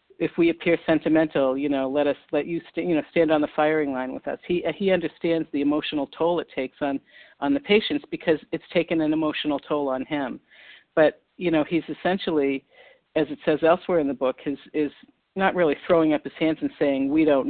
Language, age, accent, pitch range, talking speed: English, 50-69, American, 145-175 Hz, 220 wpm